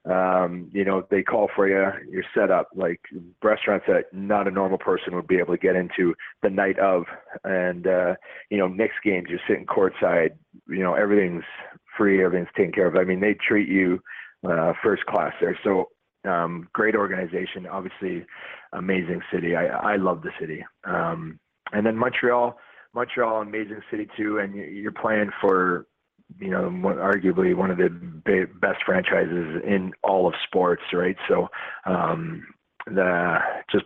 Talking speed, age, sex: 165 wpm, 30-49, male